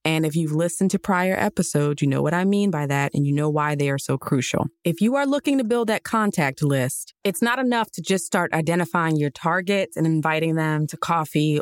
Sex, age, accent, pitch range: female, 20-39, American, 155-210 Hz